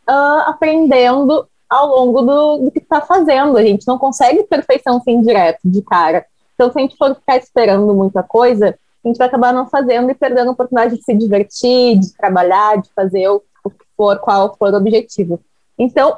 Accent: Brazilian